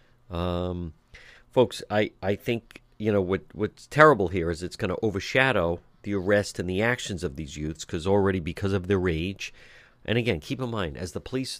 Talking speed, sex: 195 wpm, male